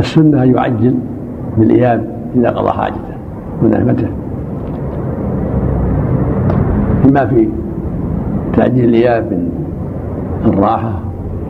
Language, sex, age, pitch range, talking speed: Arabic, male, 60-79, 85-120 Hz, 70 wpm